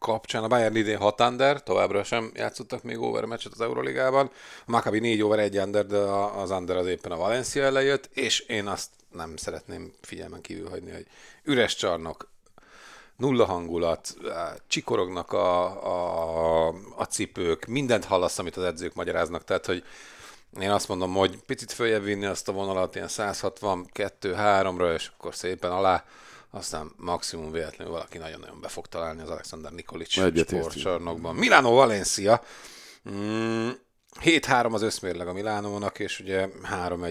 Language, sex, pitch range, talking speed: Hungarian, male, 90-115 Hz, 140 wpm